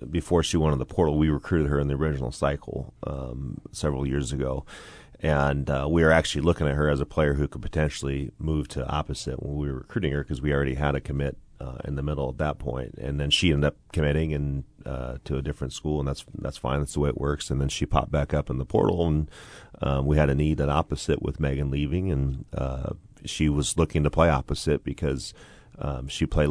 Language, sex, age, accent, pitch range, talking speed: English, male, 30-49, American, 70-75 Hz, 240 wpm